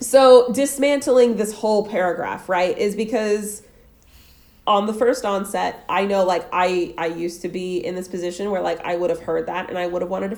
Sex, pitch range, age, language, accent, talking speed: female, 175-240 Hz, 30-49, English, American, 210 wpm